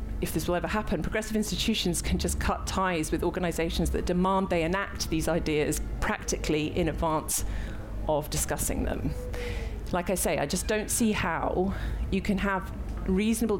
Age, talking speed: 40-59, 165 wpm